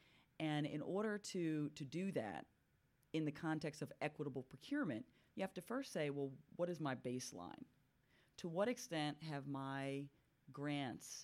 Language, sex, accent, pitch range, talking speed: English, female, American, 130-155 Hz, 155 wpm